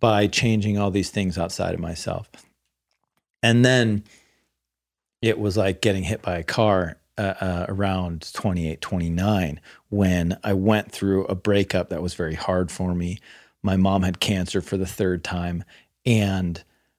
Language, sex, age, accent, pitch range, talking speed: English, male, 40-59, American, 90-120 Hz, 155 wpm